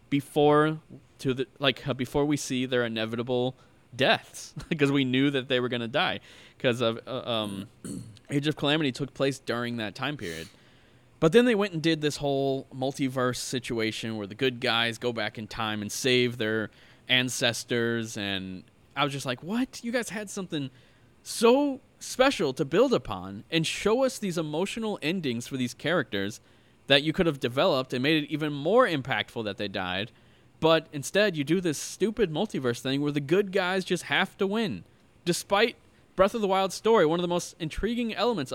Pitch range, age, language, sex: 120-165 Hz, 20-39, English, male